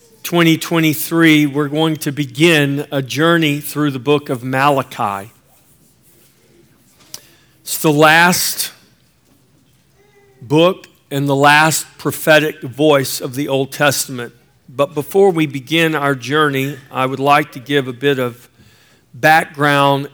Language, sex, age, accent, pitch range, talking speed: English, male, 50-69, American, 130-155 Hz, 120 wpm